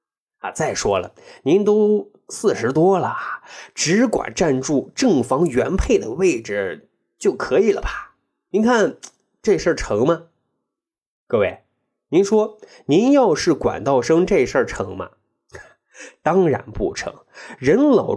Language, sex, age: Chinese, male, 20-39